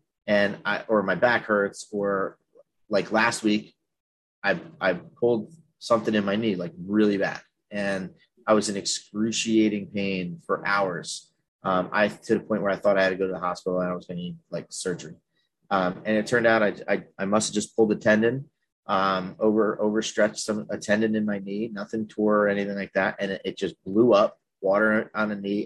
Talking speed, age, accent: 210 wpm, 30-49, American